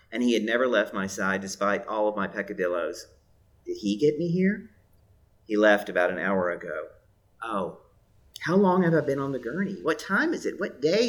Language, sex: English, male